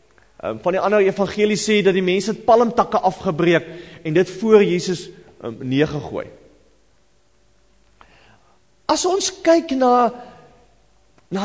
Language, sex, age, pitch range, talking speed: English, male, 40-59, 165-250 Hz, 115 wpm